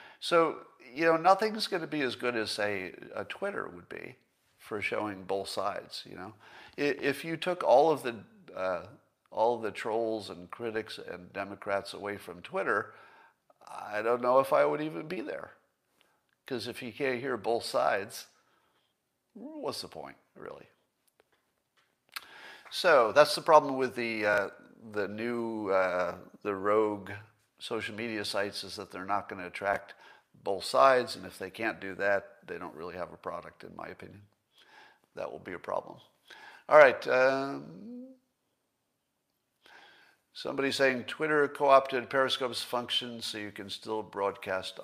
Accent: American